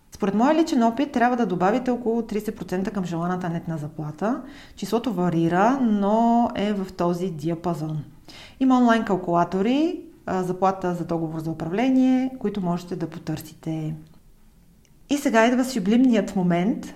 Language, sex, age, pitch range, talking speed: Bulgarian, female, 40-59, 175-240 Hz, 130 wpm